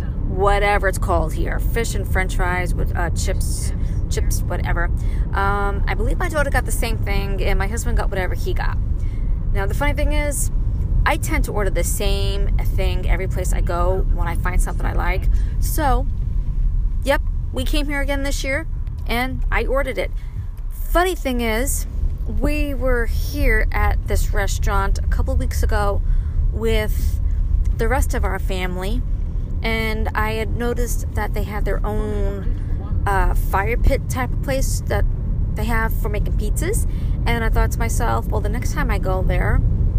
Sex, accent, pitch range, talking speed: female, American, 80-100 Hz, 175 wpm